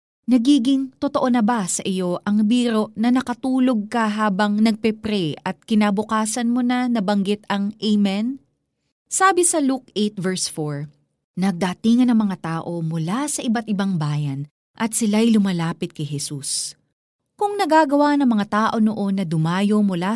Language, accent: Filipino, native